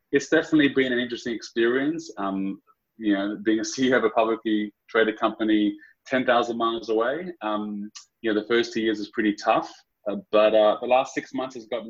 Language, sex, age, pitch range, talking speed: English, male, 20-39, 100-115 Hz, 195 wpm